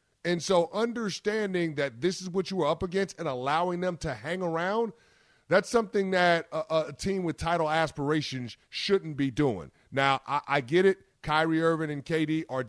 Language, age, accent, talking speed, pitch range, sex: English, 30-49, American, 185 wpm, 130-165 Hz, male